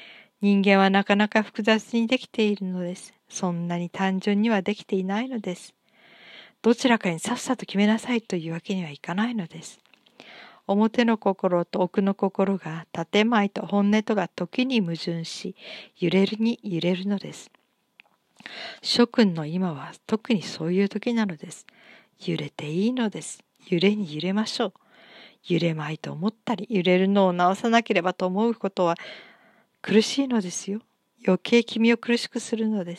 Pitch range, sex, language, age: 180-220 Hz, female, Japanese, 50-69